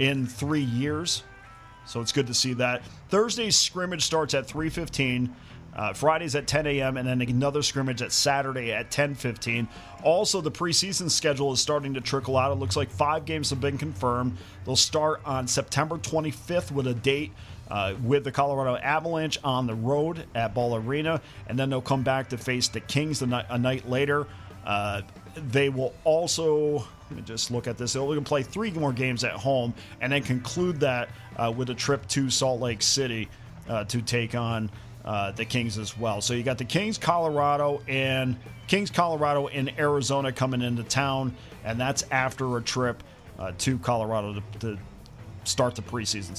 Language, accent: English, American